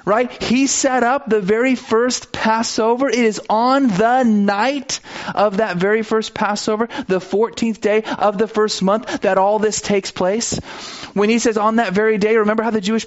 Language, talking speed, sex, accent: English, 190 wpm, male, American